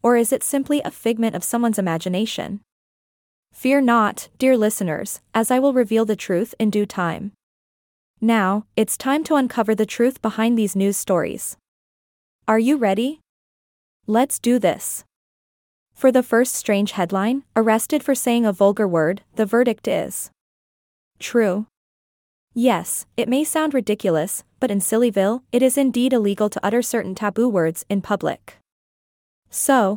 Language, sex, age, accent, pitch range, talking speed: English, female, 20-39, American, 205-250 Hz, 150 wpm